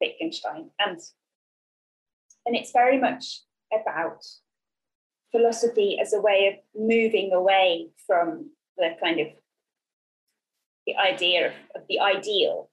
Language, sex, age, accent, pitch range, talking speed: English, female, 20-39, British, 195-325 Hz, 115 wpm